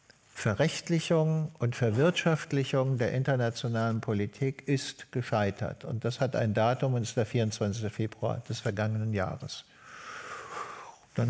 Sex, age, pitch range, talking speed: male, 50-69, 115-130 Hz, 115 wpm